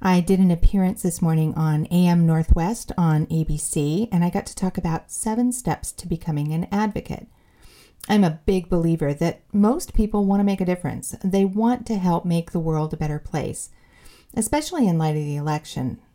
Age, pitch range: 40-59, 170-225 Hz